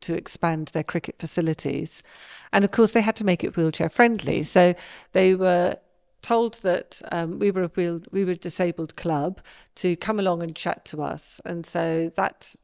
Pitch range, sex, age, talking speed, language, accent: 165-205 Hz, female, 40-59, 190 wpm, English, British